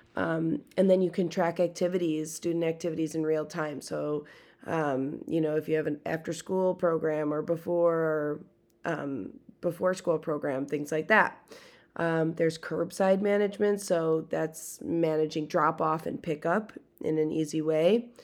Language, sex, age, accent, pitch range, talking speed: English, female, 20-39, American, 160-195 Hz, 150 wpm